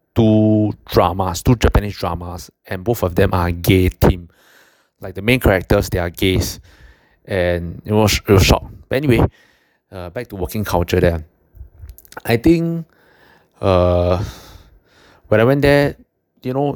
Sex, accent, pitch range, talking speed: male, Malaysian, 90-110 Hz, 145 wpm